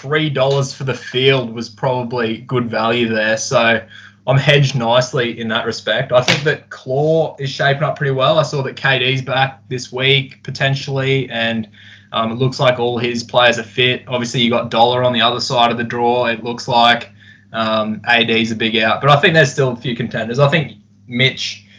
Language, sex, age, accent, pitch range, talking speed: English, male, 20-39, Australian, 115-130 Hz, 200 wpm